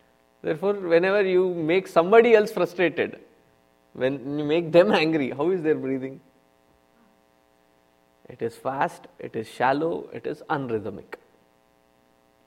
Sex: male